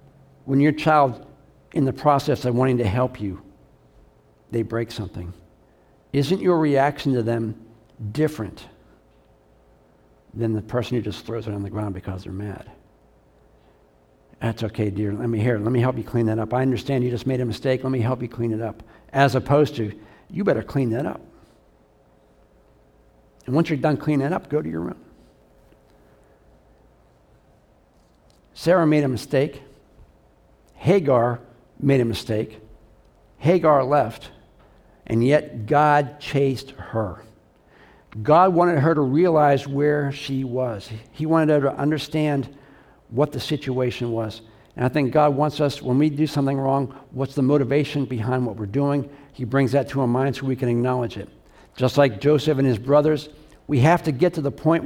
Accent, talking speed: American, 165 wpm